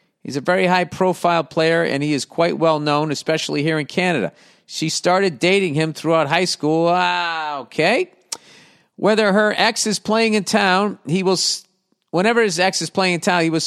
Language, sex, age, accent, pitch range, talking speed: English, male, 50-69, American, 140-170 Hz, 185 wpm